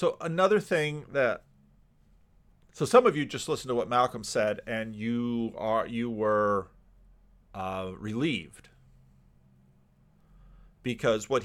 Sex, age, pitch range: male, 40-59, 105-120 Hz